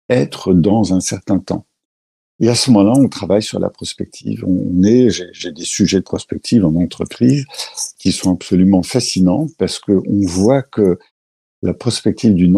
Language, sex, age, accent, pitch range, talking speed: French, male, 60-79, French, 90-110 Hz, 175 wpm